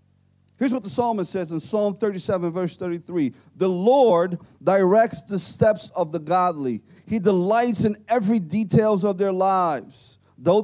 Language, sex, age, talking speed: English, male, 40-59, 150 wpm